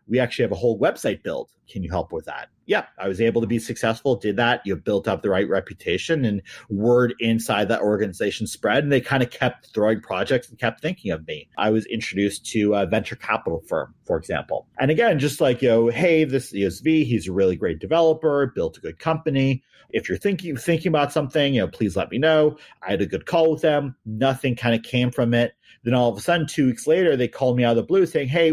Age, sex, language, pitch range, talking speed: 40-59, male, English, 105-140 Hz, 245 wpm